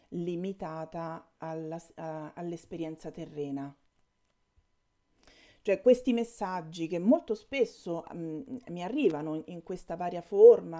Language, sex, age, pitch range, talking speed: Italian, female, 40-59, 160-215 Hz, 100 wpm